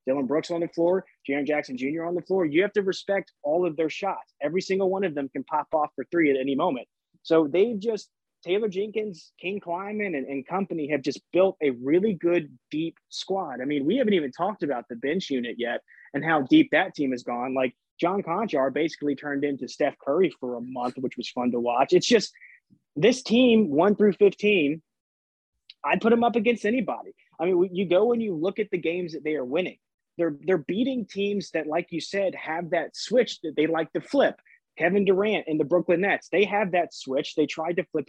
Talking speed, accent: 220 wpm, American